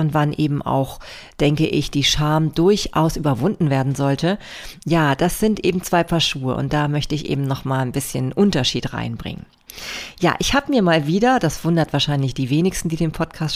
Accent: German